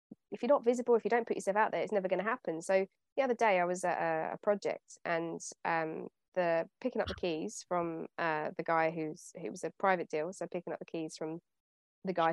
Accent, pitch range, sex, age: British, 175-235 Hz, female, 20-39